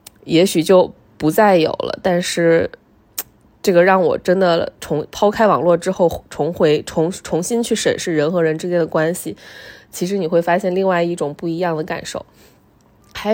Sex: female